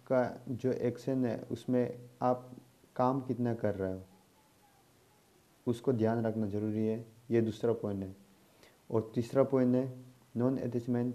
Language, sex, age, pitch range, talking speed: Hindi, male, 30-49, 110-125 Hz, 140 wpm